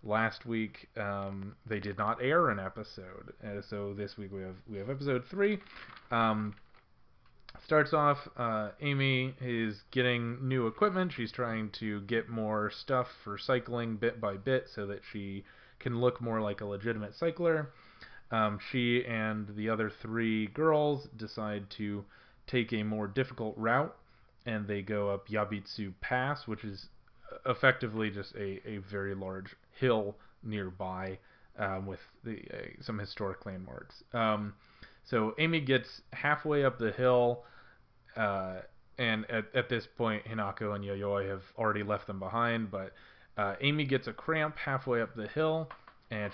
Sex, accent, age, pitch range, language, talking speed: male, American, 20-39, 100-125 Hz, English, 155 wpm